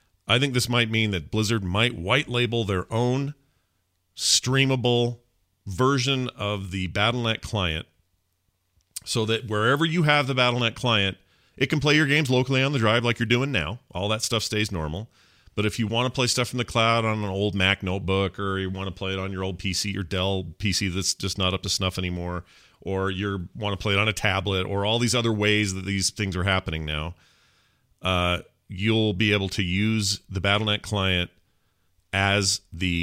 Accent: American